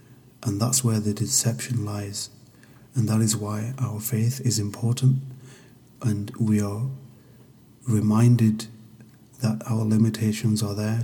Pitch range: 110-125 Hz